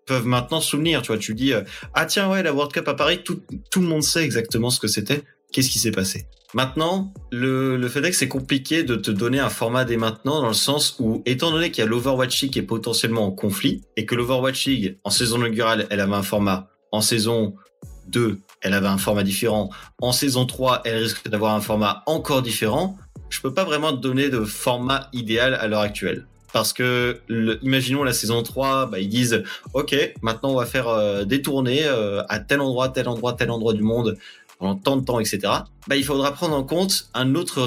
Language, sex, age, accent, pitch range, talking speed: French, male, 30-49, French, 110-135 Hz, 230 wpm